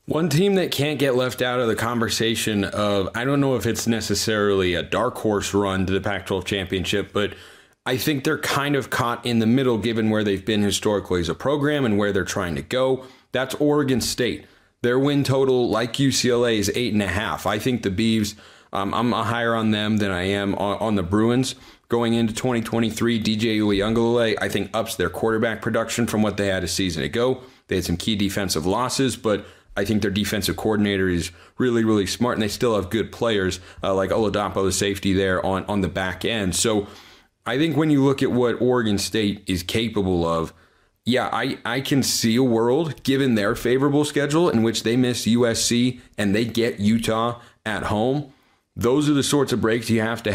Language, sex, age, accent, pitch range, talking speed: English, male, 30-49, American, 100-125 Hz, 205 wpm